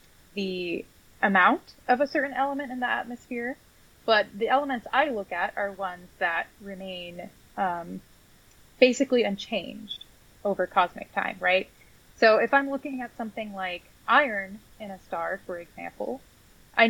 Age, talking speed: 20-39, 140 wpm